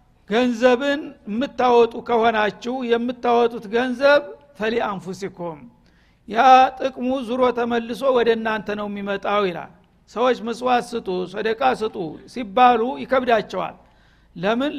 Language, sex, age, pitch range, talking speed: Amharic, male, 50-69, 215-250 Hz, 95 wpm